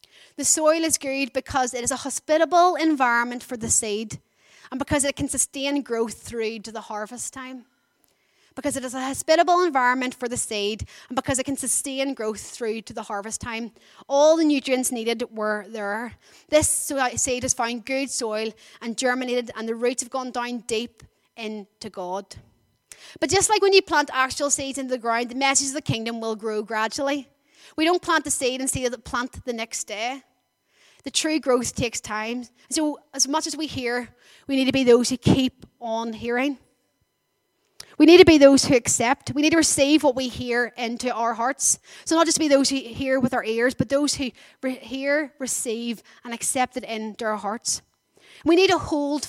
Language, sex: English, female